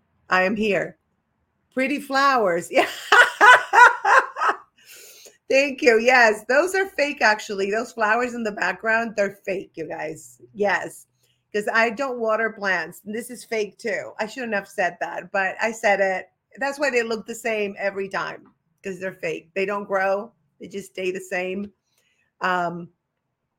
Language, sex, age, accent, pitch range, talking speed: English, female, 30-49, American, 195-260 Hz, 155 wpm